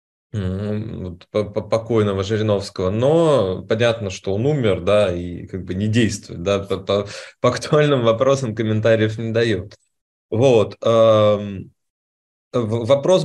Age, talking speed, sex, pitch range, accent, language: 20-39, 110 wpm, male, 100-125 Hz, native, Russian